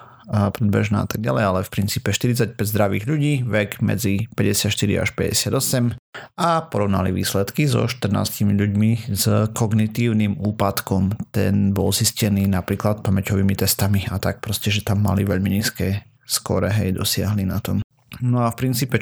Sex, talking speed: male, 150 wpm